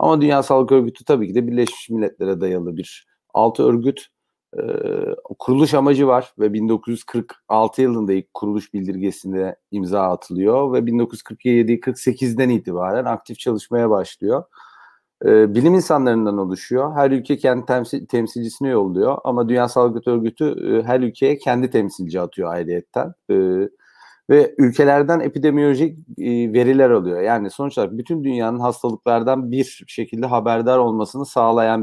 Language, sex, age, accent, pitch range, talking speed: Turkish, male, 40-59, native, 115-140 Hz, 130 wpm